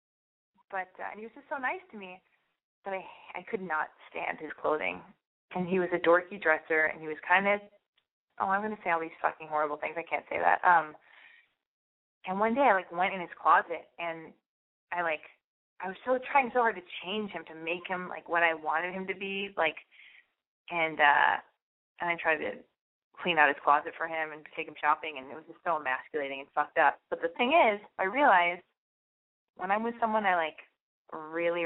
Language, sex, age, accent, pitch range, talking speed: English, female, 20-39, American, 155-190 Hz, 215 wpm